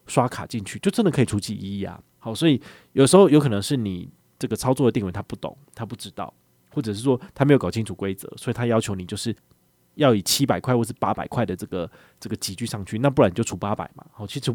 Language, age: Chinese, 20-39